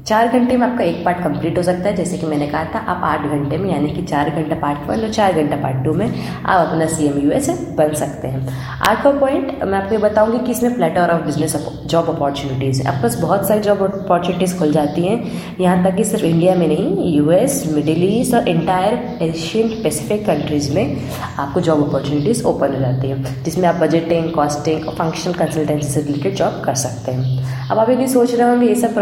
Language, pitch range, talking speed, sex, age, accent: English, 150-205 Hz, 130 wpm, female, 20-39, Indian